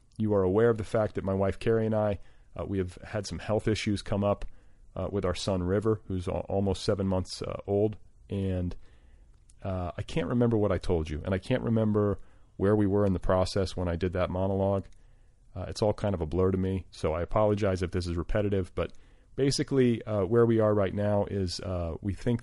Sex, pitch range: male, 90-105 Hz